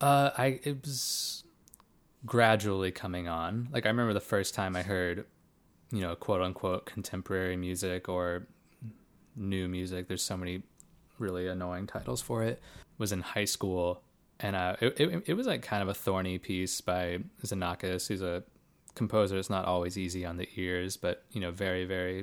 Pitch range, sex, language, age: 90-105 Hz, male, English, 20-39